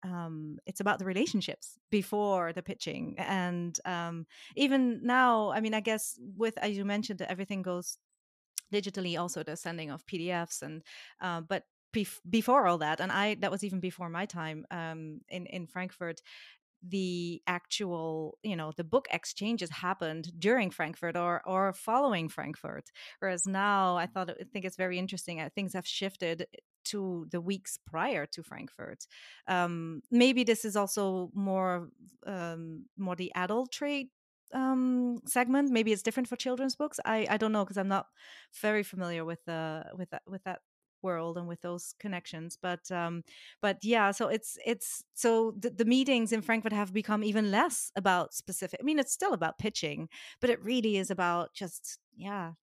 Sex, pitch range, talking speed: female, 175-220 Hz, 170 wpm